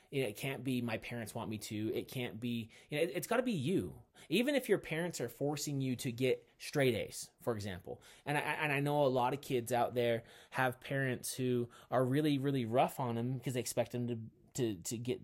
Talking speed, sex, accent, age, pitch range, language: 230 wpm, male, American, 30-49, 120-155 Hz, English